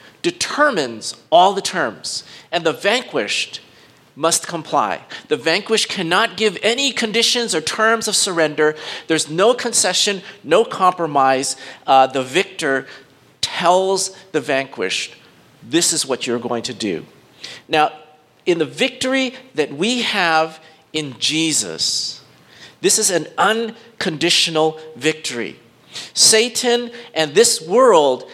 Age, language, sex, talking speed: 50-69, English, male, 115 wpm